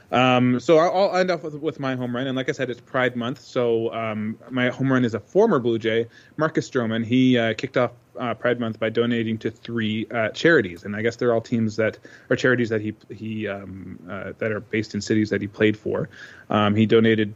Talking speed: 230 wpm